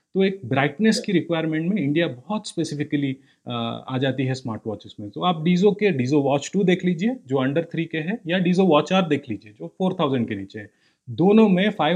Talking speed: 220 wpm